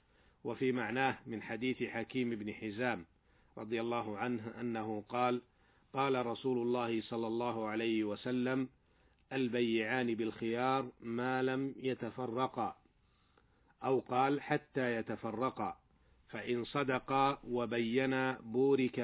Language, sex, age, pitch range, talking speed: Arabic, male, 50-69, 115-130 Hz, 100 wpm